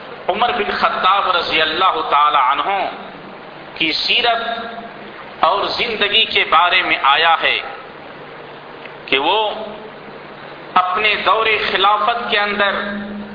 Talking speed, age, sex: 105 wpm, 50-69, male